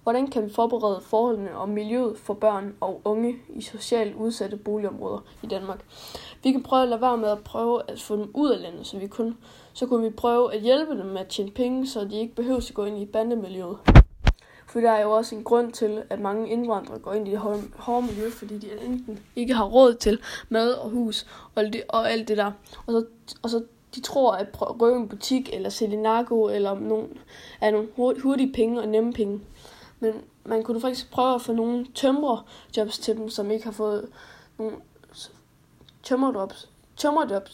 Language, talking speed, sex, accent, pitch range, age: Danish, 195 wpm, female, native, 210-235 Hz, 20-39